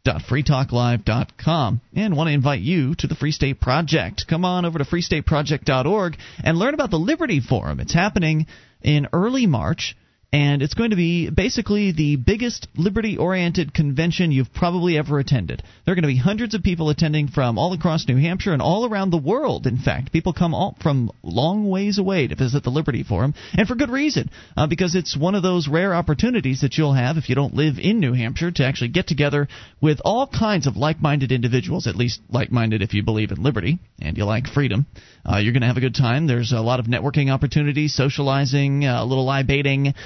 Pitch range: 125-160 Hz